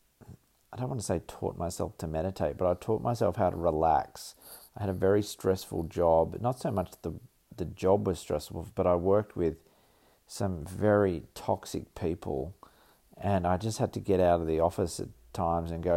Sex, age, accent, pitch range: male, 40-59, Australian, 85-100 Hz